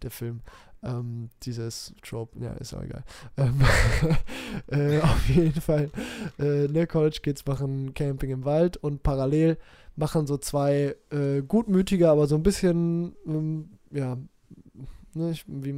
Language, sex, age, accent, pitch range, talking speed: German, male, 20-39, German, 140-170 Hz, 135 wpm